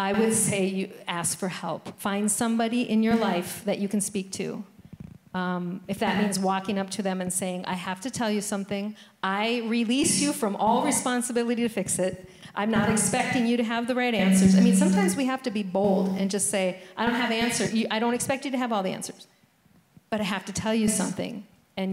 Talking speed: 225 wpm